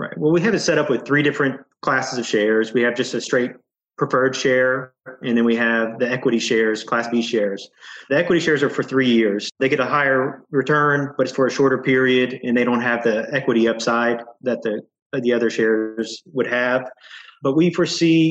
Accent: American